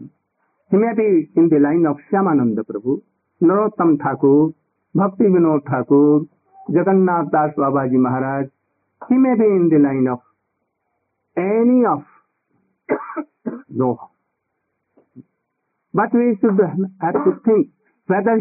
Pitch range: 155-220 Hz